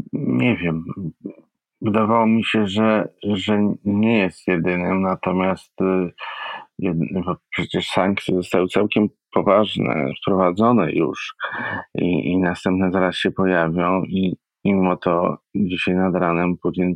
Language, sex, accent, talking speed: Polish, male, native, 110 wpm